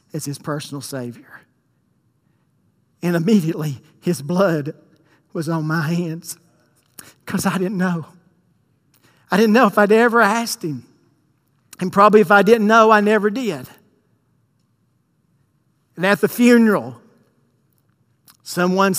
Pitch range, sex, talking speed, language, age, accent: 160-205 Hz, male, 120 wpm, English, 50-69, American